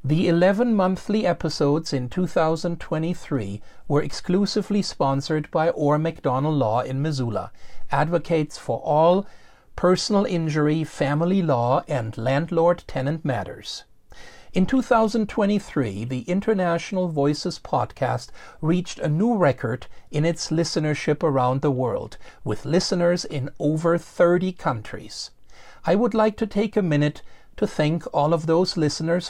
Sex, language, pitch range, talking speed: male, English, 140-180 Hz, 125 wpm